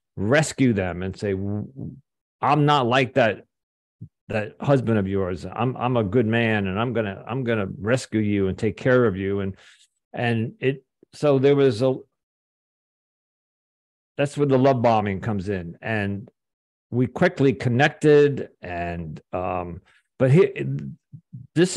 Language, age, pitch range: English, 50-69, 100-130 Hz